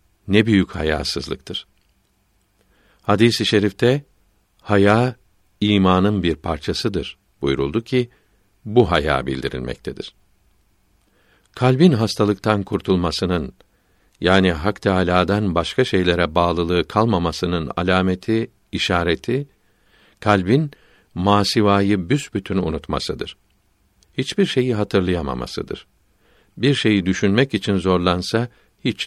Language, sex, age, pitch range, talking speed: Turkish, male, 60-79, 90-105 Hz, 80 wpm